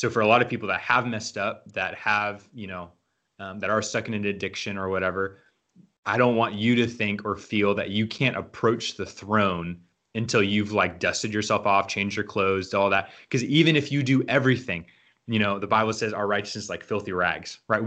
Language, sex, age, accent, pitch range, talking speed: English, male, 20-39, American, 105-130 Hz, 220 wpm